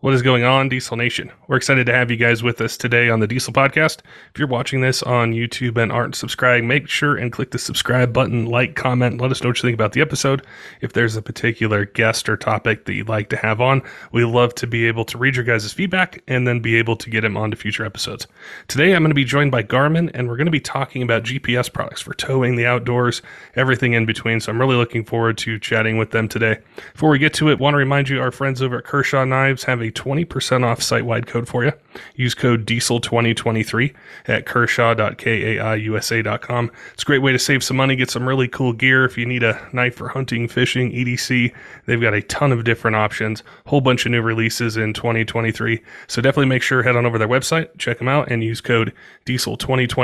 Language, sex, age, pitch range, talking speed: English, male, 30-49, 115-130 Hz, 235 wpm